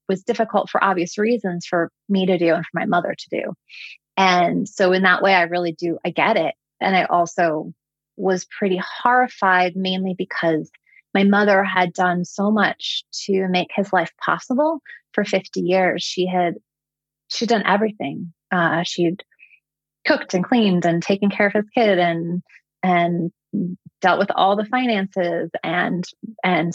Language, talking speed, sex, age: English, 165 wpm, female, 20-39